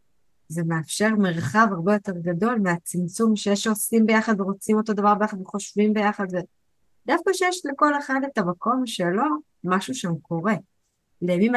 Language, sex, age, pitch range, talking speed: Hebrew, female, 20-39, 175-220 Hz, 140 wpm